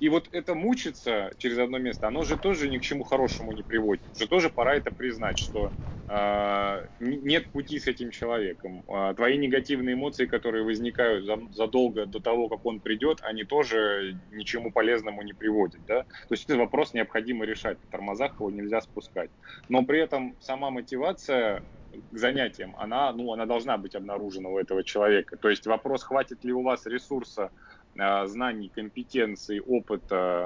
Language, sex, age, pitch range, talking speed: Russian, male, 20-39, 105-125 Hz, 155 wpm